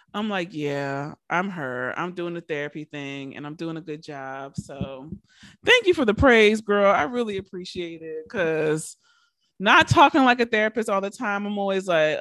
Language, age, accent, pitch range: English, 20-39, American, 155-230 Hz